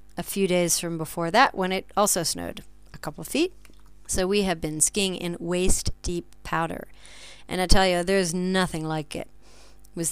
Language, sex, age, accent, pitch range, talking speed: English, female, 40-59, American, 160-195 Hz, 185 wpm